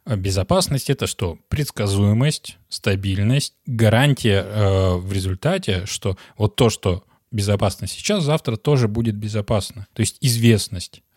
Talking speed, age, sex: 120 wpm, 20-39, male